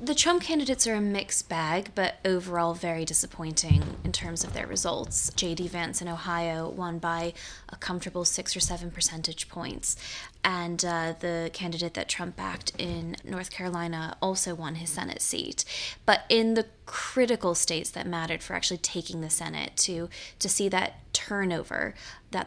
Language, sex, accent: English, female, American